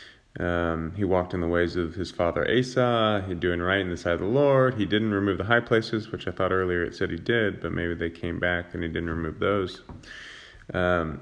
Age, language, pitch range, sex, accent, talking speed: 30-49, English, 85-110 Hz, male, American, 235 wpm